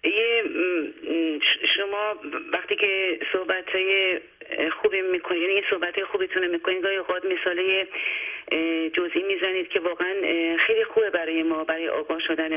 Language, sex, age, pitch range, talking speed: Persian, female, 40-59, 170-205 Hz, 125 wpm